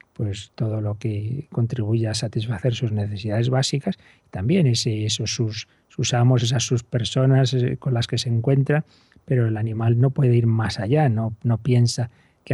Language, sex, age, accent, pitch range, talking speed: Spanish, male, 40-59, Spanish, 115-135 Hz, 170 wpm